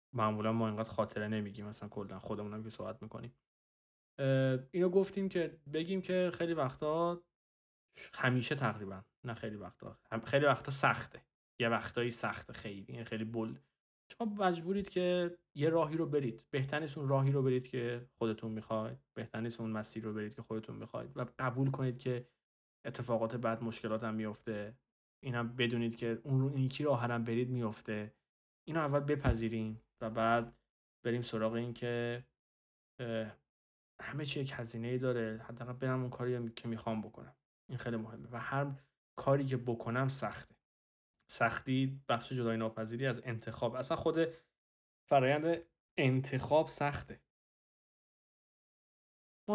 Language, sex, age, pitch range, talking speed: Persian, male, 20-39, 110-135 Hz, 135 wpm